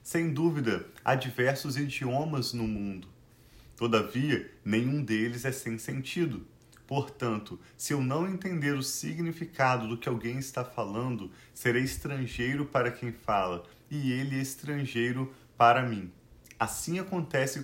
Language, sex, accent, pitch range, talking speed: Portuguese, male, Brazilian, 120-140 Hz, 125 wpm